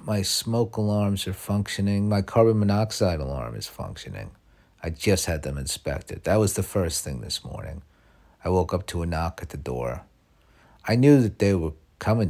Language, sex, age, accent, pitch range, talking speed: English, male, 50-69, American, 75-100 Hz, 185 wpm